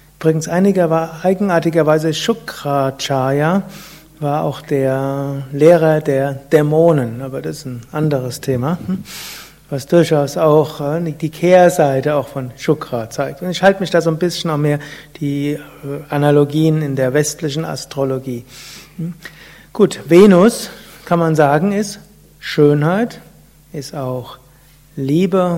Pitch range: 145-175 Hz